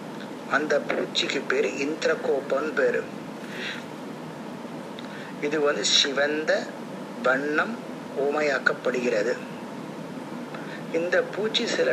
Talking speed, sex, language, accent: 60 wpm, male, Tamil, native